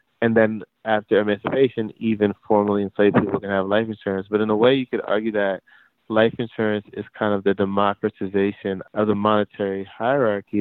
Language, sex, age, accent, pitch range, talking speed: English, male, 20-39, American, 95-105 Hz, 175 wpm